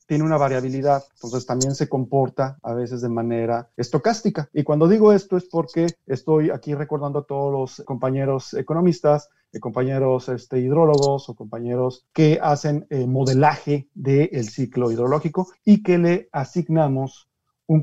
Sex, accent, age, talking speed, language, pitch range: male, Mexican, 40-59, 145 wpm, English, 135-175 Hz